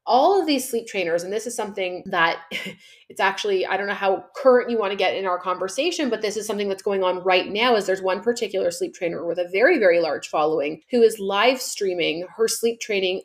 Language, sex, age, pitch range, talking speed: English, female, 30-49, 175-215 Hz, 235 wpm